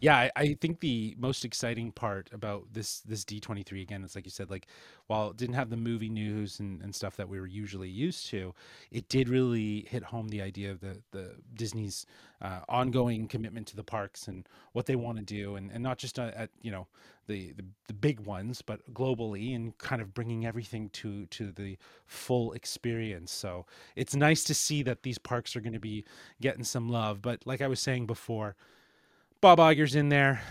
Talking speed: 210 wpm